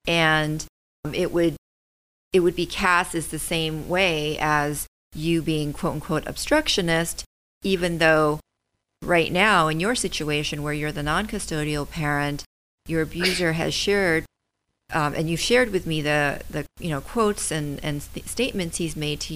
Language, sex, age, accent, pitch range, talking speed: English, female, 40-59, American, 145-170 Hz, 160 wpm